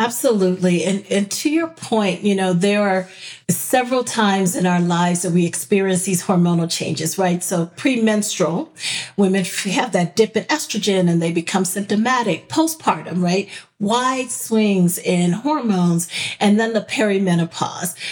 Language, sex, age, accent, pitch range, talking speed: English, female, 40-59, American, 180-225 Hz, 145 wpm